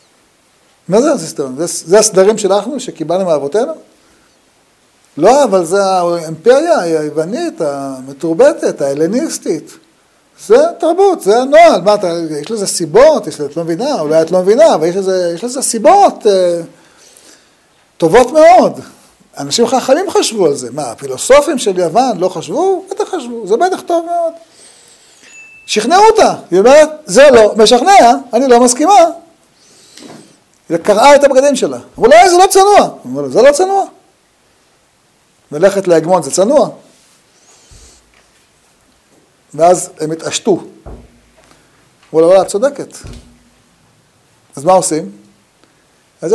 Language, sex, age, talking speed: Hebrew, male, 50-69, 125 wpm